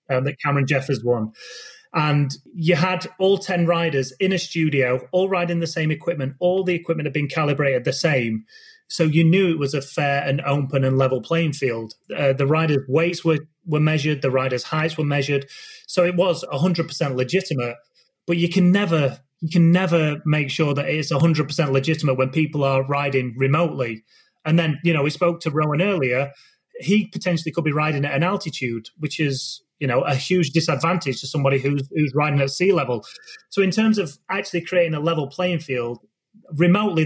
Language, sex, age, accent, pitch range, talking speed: English, male, 30-49, British, 140-175 Hz, 190 wpm